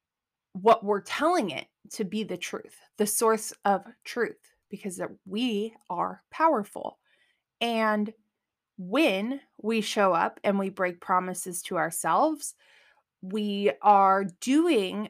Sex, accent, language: female, American, English